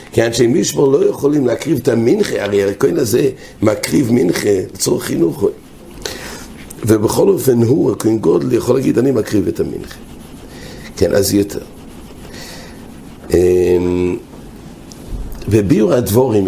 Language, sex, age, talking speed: English, male, 60-79, 115 wpm